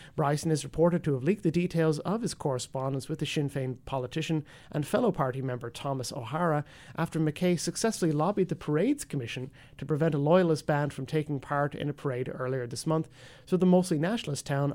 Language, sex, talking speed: English, male, 200 wpm